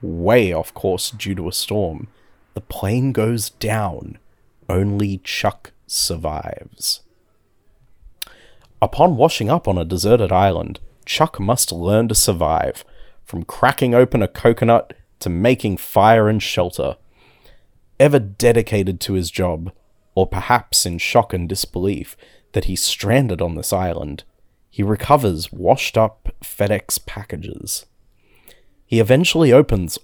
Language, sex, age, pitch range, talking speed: English, male, 30-49, 95-115 Hz, 120 wpm